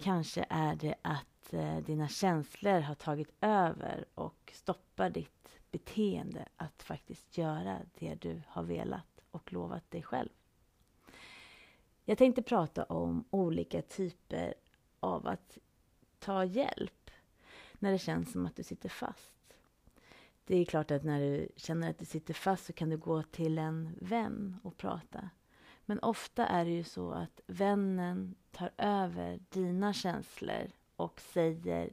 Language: Swedish